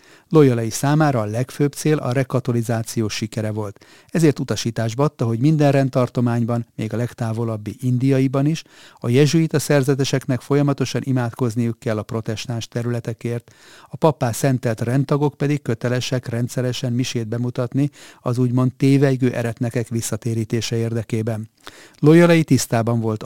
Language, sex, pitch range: Hungarian, male, 115-140 Hz